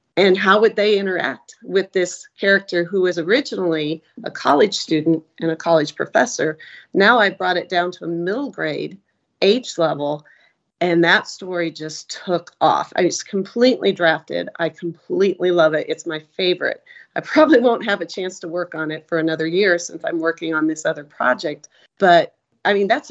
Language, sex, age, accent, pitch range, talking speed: English, female, 40-59, American, 165-200 Hz, 180 wpm